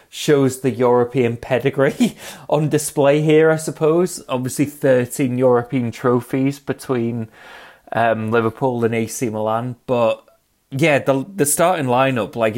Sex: male